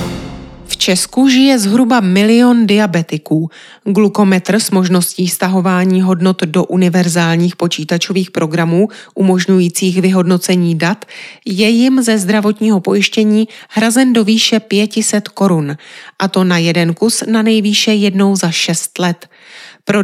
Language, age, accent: Czech, 30-49, native